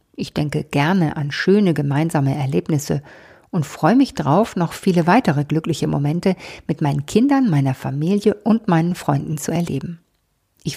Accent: German